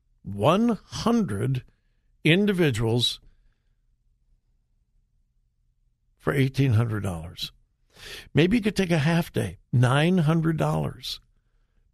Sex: male